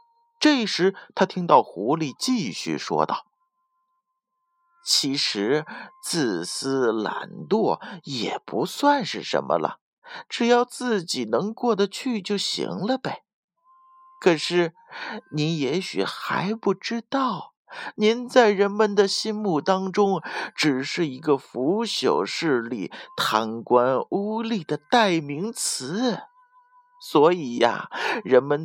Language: Chinese